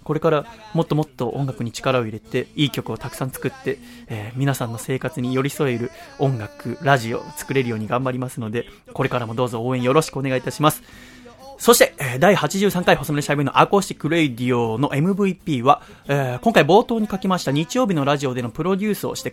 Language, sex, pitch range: Japanese, male, 125-180 Hz